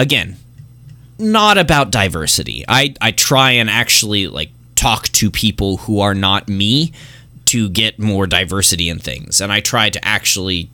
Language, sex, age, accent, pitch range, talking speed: English, male, 20-39, American, 100-125 Hz, 155 wpm